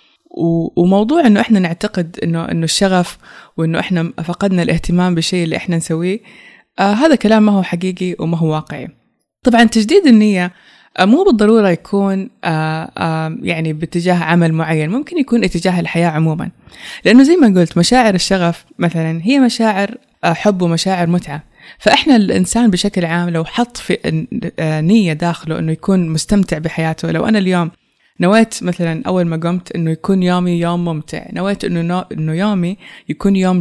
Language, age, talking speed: Persian, 20-39, 145 wpm